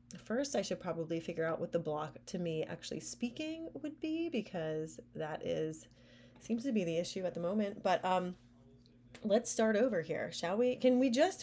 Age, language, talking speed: 30-49, English, 195 wpm